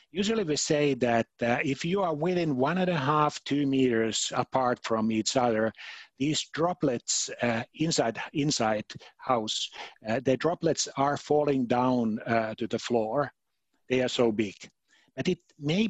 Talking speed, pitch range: 160 wpm, 115-145 Hz